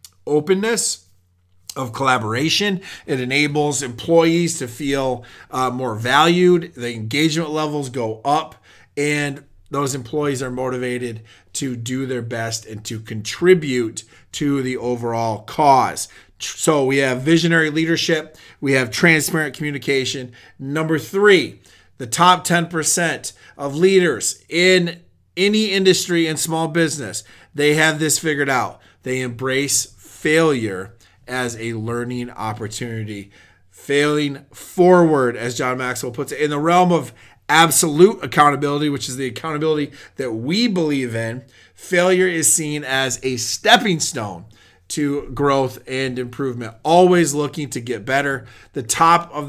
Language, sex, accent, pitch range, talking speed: English, male, American, 125-160 Hz, 130 wpm